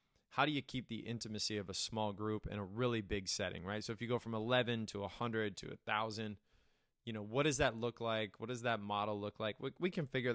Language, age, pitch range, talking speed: English, 20-39, 105-120 Hz, 250 wpm